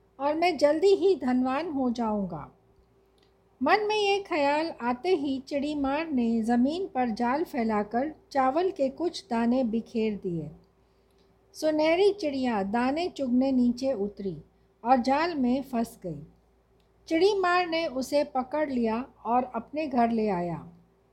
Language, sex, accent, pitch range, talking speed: Hindi, female, native, 235-300 Hz, 130 wpm